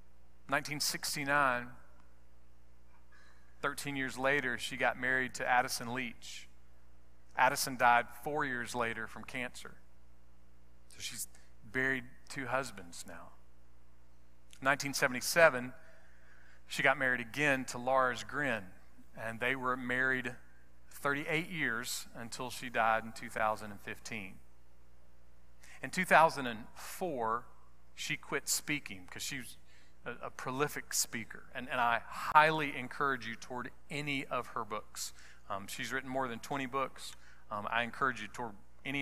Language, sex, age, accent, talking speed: English, male, 40-59, American, 120 wpm